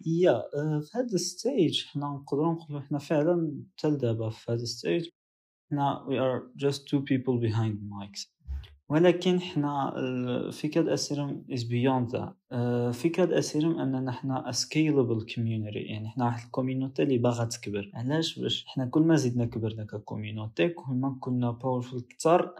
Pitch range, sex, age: 110-135 Hz, male, 20-39